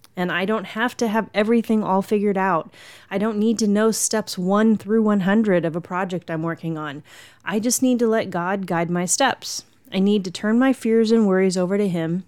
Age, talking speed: 30-49, 220 wpm